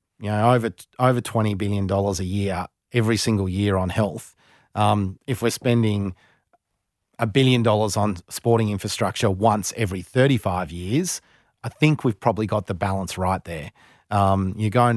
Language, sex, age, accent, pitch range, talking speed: English, male, 30-49, Australian, 95-120 Hz, 155 wpm